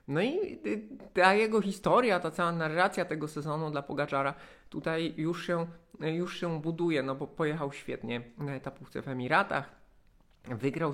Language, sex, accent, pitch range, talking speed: Polish, male, native, 130-160 Hz, 150 wpm